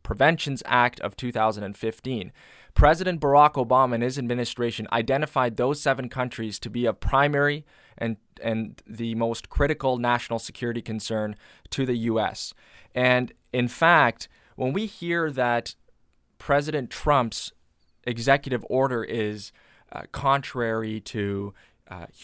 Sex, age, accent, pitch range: male, 20-39, American, 110-130 Hz